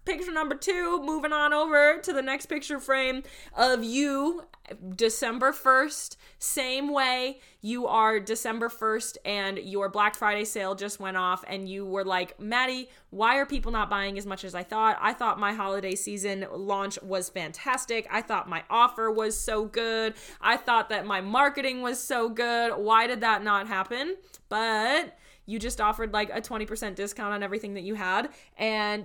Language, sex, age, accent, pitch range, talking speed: English, female, 20-39, American, 205-260 Hz, 180 wpm